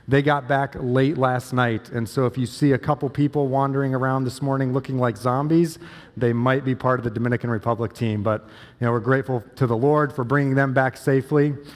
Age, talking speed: 40-59, 220 wpm